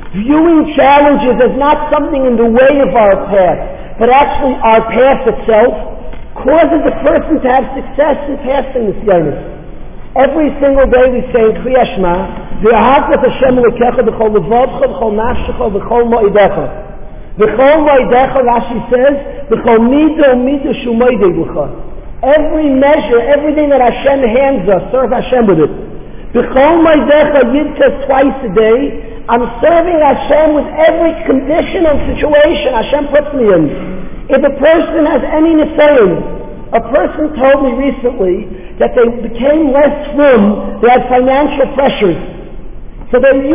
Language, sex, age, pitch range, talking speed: English, male, 50-69, 235-295 Hz, 150 wpm